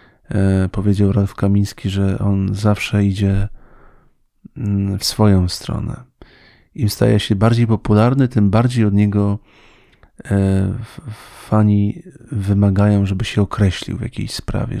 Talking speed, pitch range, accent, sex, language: 110 wpm, 95-110 Hz, native, male, Polish